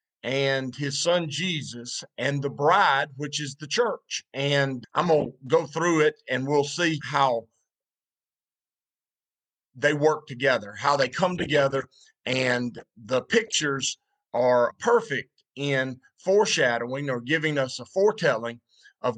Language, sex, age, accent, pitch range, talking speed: English, male, 50-69, American, 135-175 Hz, 130 wpm